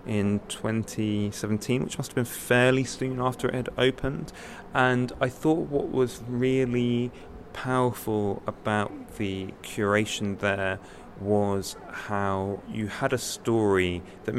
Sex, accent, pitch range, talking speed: male, British, 95-125 Hz, 125 wpm